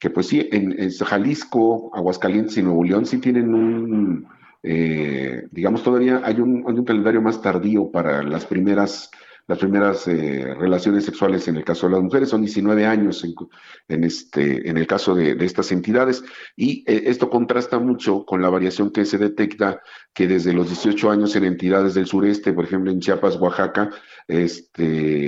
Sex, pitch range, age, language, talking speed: male, 85-105 Hz, 50-69, Spanish, 180 wpm